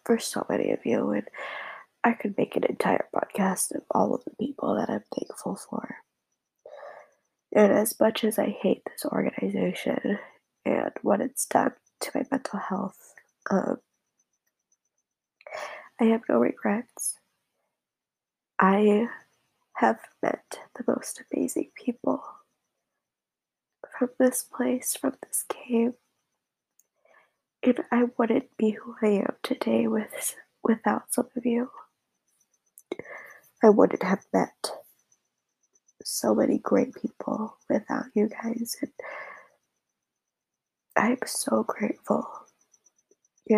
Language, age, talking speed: English, 20-39, 115 wpm